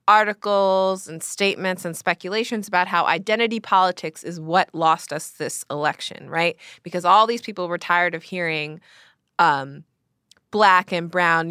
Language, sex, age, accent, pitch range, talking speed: English, female, 20-39, American, 170-215 Hz, 145 wpm